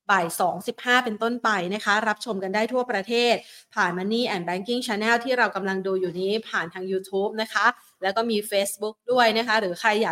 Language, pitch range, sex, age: Thai, 210-255 Hz, female, 30-49